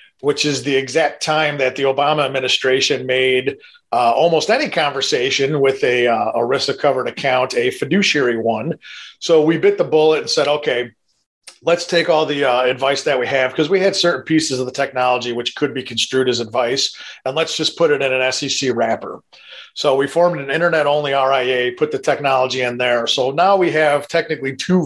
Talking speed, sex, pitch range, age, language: 195 wpm, male, 130-155 Hz, 40-59, English